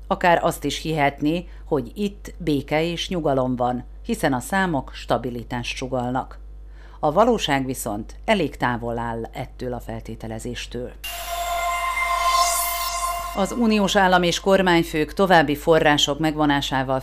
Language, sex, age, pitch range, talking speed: Hungarian, female, 50-69, 125-170 Hz, 115 wpm